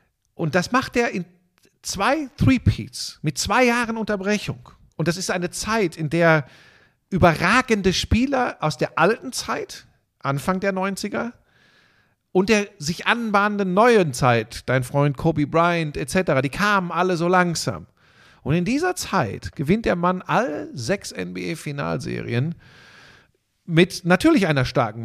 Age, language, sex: 50-69, German, male